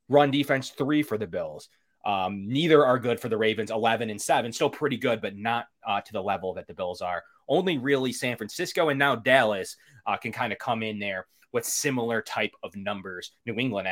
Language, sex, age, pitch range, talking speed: English, male, 20-39, 100-125 Hz, 215 wpm